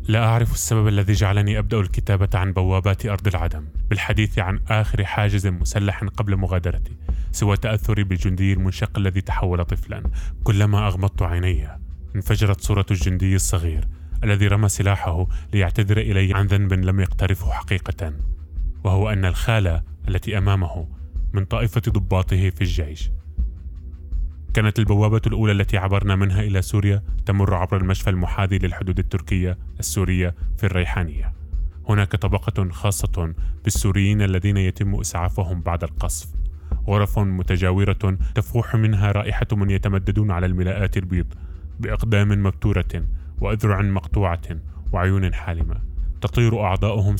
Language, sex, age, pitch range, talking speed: Arabic, male, 20-39, 85-105 Hz, 120 wpm